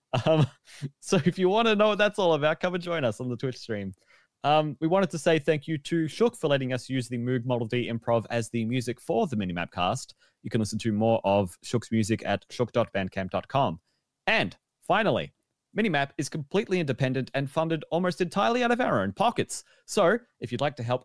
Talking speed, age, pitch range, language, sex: 215 wpm, 30-49, 110-150 Hz, English, male